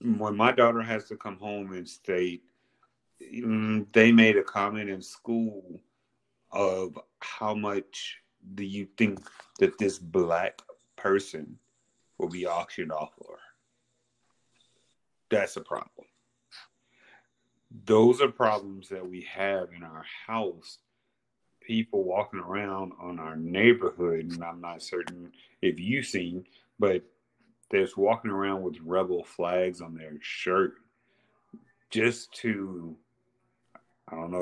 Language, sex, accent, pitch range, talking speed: English, male, American, 90-120 Hz, 120 wpm